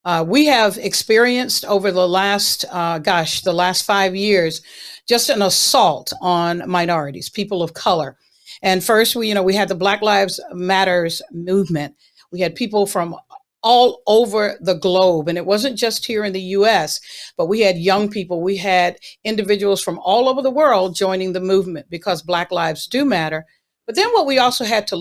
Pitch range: 175-220 Hz